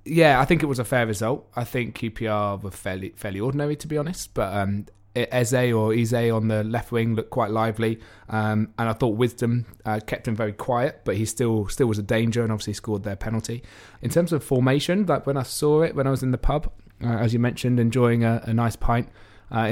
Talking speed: 235 wpm